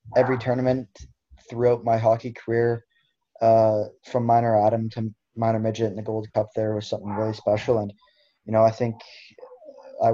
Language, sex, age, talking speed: English, male, 20-39, 165 wpm